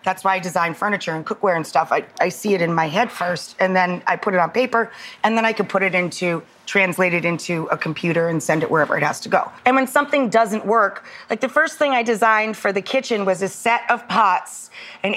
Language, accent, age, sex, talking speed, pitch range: English, American, 30-49, female, 255 wpm, 190-245 Hz